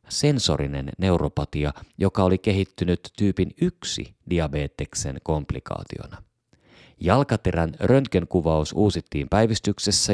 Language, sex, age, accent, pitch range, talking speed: Finnish, male, 30-49, native, 80-110 Hz, 75 wpm